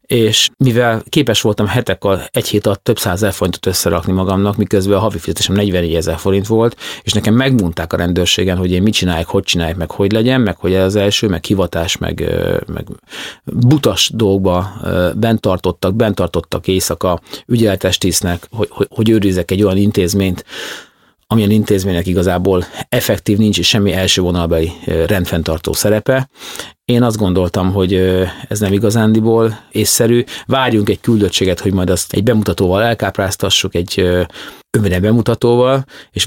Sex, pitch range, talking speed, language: male, 95-115 Hz, 145 wpm, Hungarian